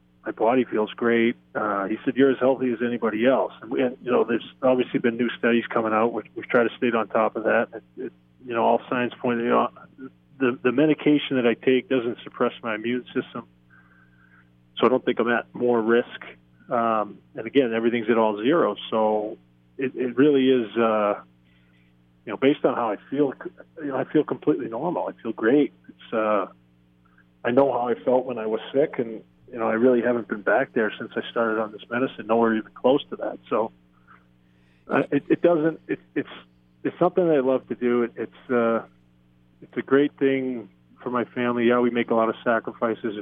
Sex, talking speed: male, 210 wpm